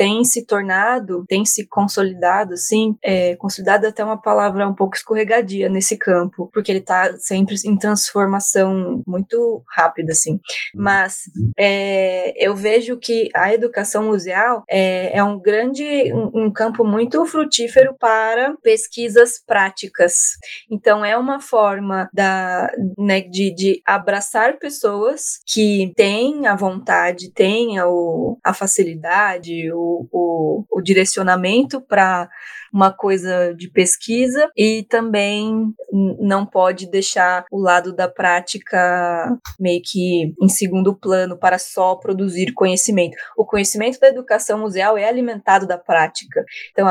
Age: 20-39